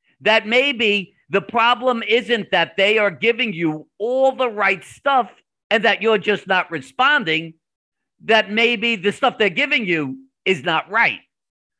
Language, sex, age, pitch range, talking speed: English, male, 50-69, 155-225 Hz, 155 wpm